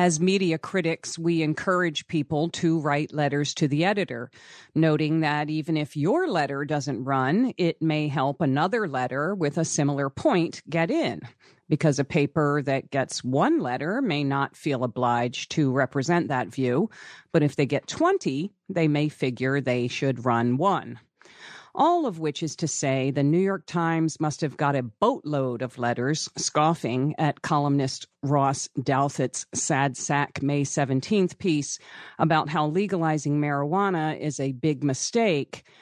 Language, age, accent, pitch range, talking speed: English, 50-69, American, 135-170 Hz, 155 wpm